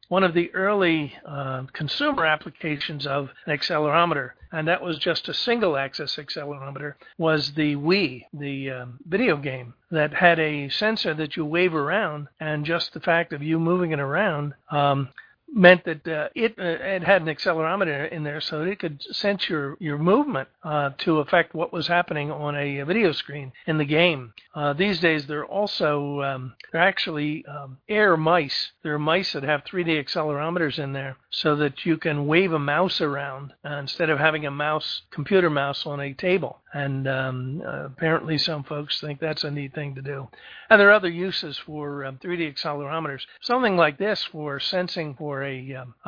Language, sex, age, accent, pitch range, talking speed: English, male, 50-69, American, 145-175 Hz, 185 wpm